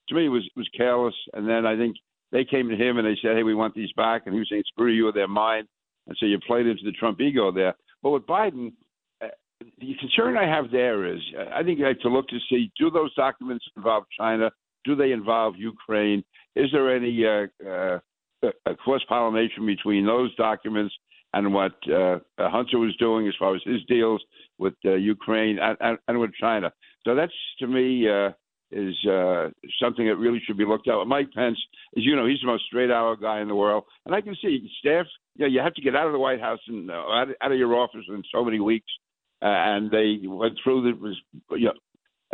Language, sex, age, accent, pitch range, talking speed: English, male, 60-79, American, 105-125 Hz, 220 wpm